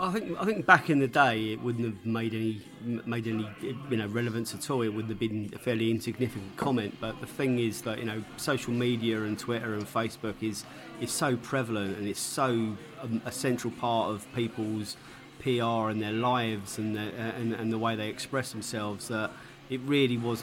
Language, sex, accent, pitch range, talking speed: English, male, British, 110-125 Hz, 210 wpm